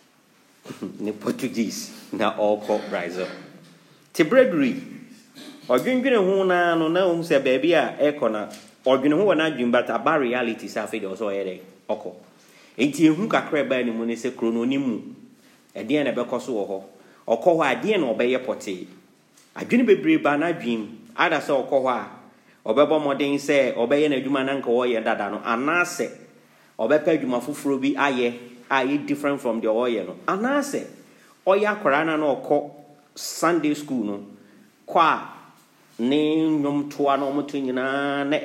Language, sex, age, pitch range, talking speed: Italian, male, 40-59, 120-160 Hz, 175 wpm